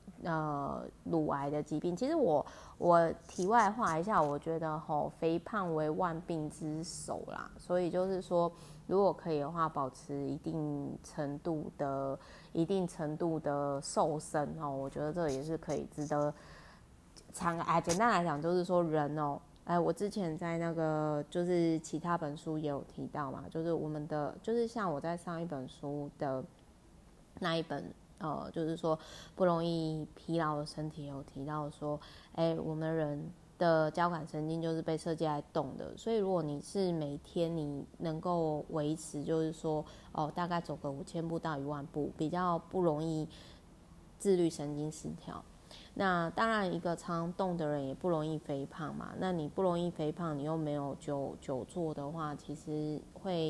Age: 20-39